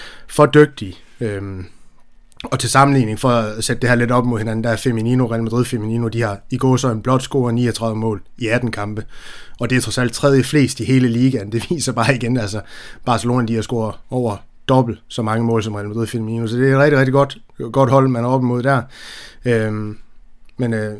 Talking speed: 220 wpm